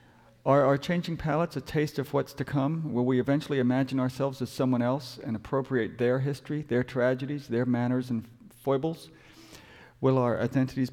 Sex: male